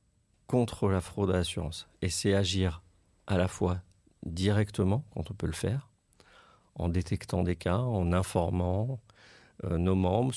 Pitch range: 90-105 Hz